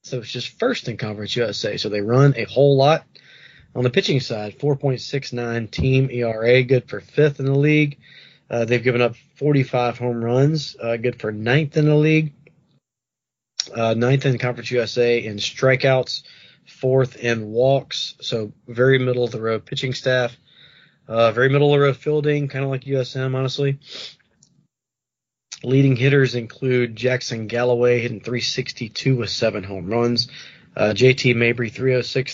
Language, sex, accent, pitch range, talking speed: English, male, American, 120-140 Hz, 145 wpm